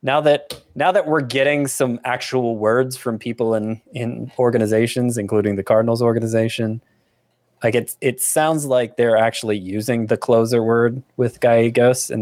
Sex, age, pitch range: male, 20-39, 105-125 Hz